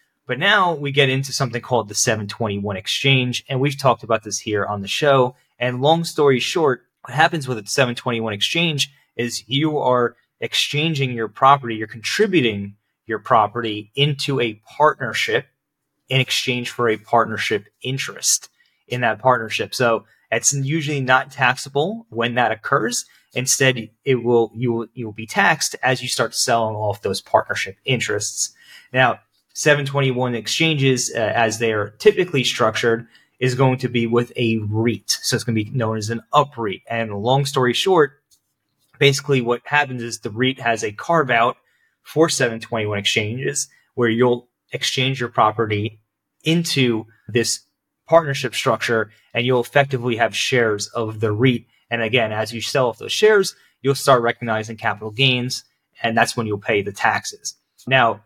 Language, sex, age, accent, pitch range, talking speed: English, male, 20-39, American, 115-140 Hz, 160 wpm